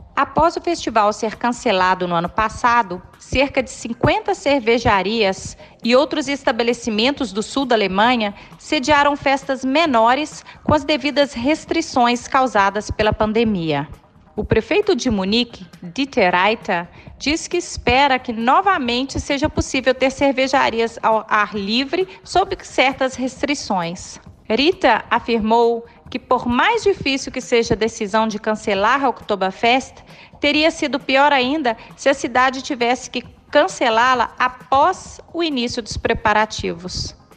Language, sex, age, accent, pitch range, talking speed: Portuguese, female, 40-59, Brazilian, 215-270 Hz, 125 wpm